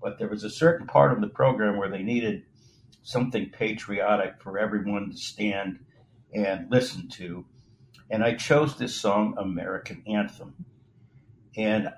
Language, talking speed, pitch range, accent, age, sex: English, 145 wpm, 105-125 Hz, American, 60-79, male